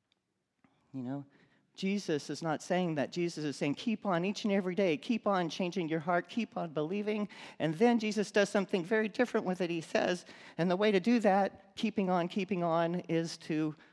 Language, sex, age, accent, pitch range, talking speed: English, male, 40-59, American, 140-190 Hz, 200 wpm